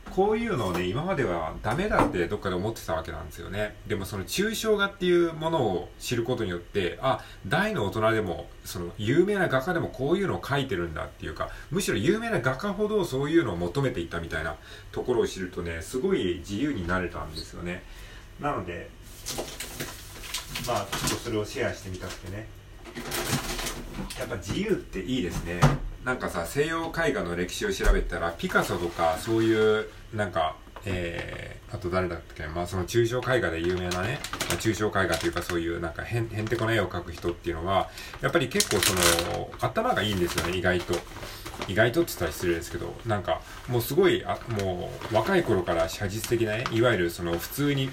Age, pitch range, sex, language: 40-59, 90-125 Hz, male, Japanese